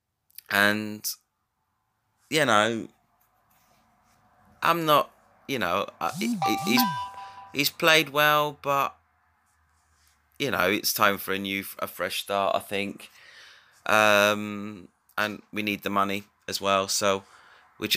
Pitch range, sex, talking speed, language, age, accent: 100-135 Hz, male, 115 wpm, English, 30-49, British